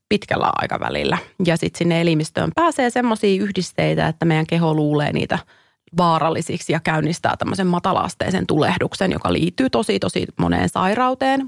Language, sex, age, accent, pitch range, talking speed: Finnish, female, 30-49, native, 165-200 Hz, 135 wpm